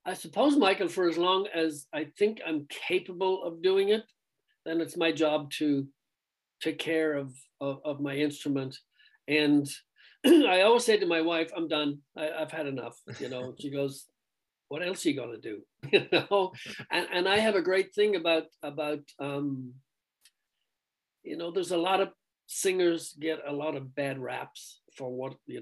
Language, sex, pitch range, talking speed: English, male, 145-180 Hz, 185 wpm